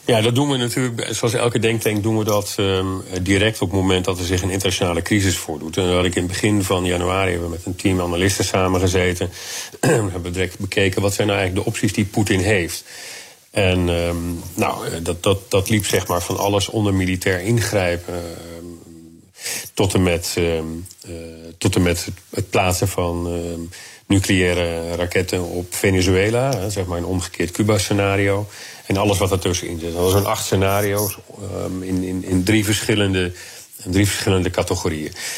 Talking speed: 185 wpm